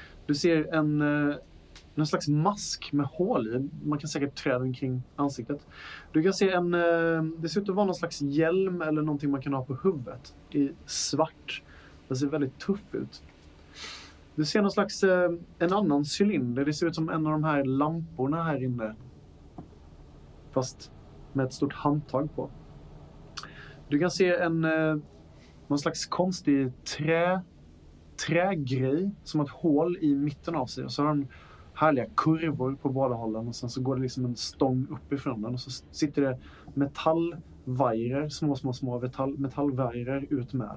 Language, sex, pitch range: Swedish, male, 130-165 Hz